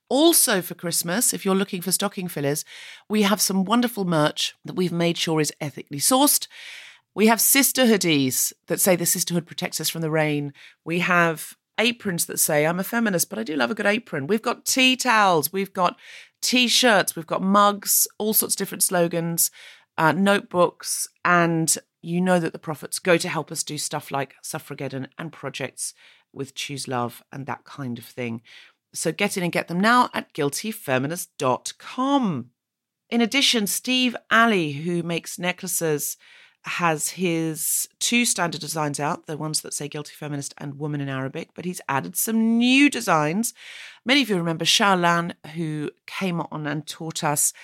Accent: British